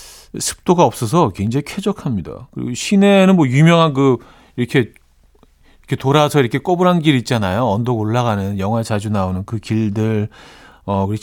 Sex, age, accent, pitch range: male, 40-59, native, 95-150 Hz